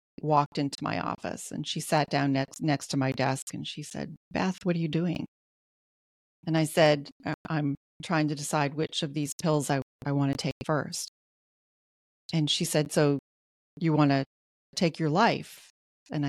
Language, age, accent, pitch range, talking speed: English, 40-59, American, 150-195 Hz, 180 wpm